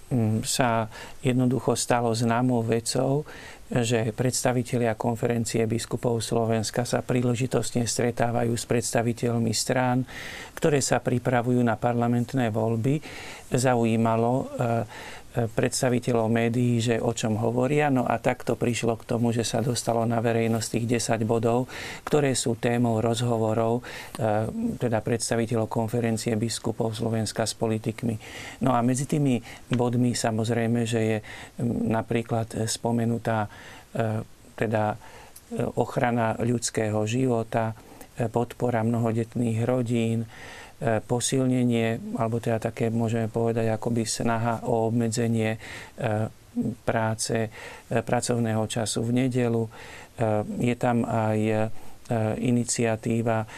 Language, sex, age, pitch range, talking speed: Slovak, male, 50-69, 115-120 Hz, 100 wpm